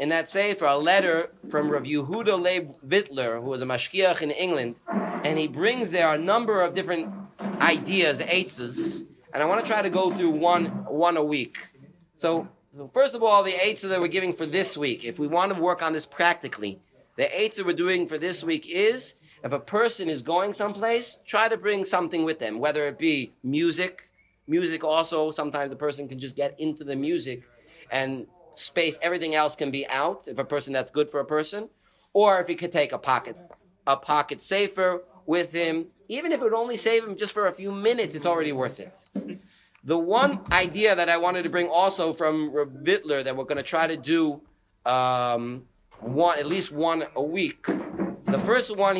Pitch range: 145-185 Hz